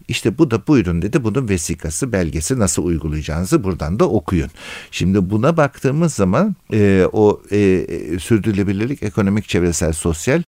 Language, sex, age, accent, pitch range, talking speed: Turkish, male, 60-79, native, 85-115 Hz, 135 wpm